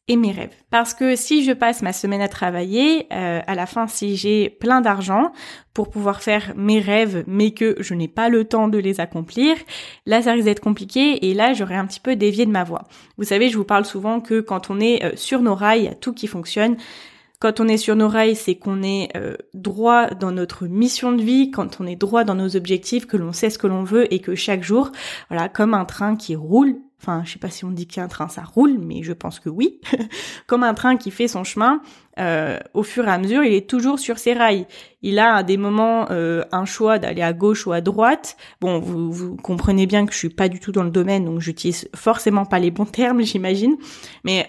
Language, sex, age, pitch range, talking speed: French, female, 20-39, 190-235 Hz, 245 wpm